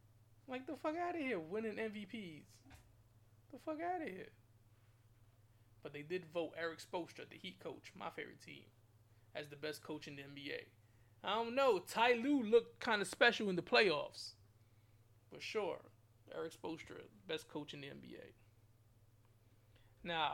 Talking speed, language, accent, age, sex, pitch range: 160 wpm, English, American, 20-39, male, 110-170 Hz